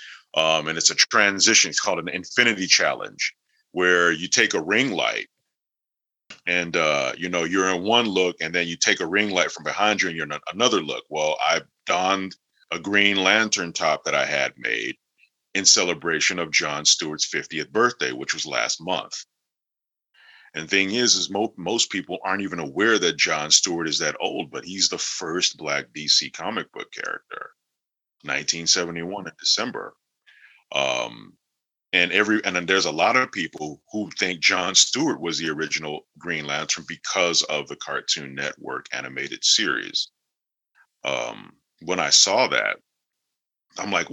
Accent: American